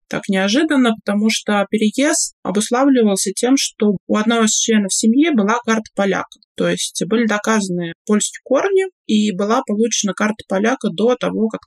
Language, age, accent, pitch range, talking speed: Russian, 20-39, native, 185-230 Hz, 155 wpm